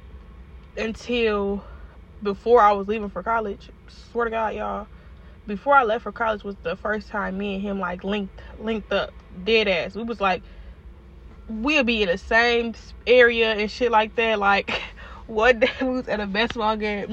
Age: 10-29